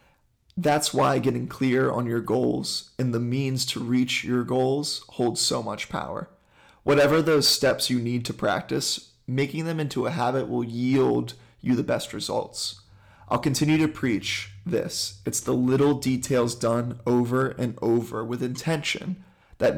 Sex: male